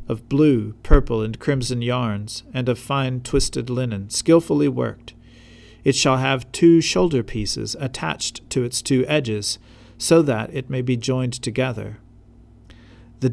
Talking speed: 145 wpm